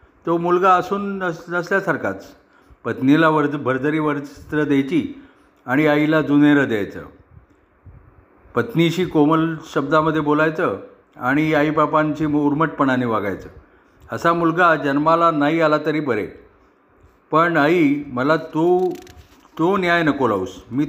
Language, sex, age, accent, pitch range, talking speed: Marathi, male, 50-69, native, 130-160 Hz, 110 wpm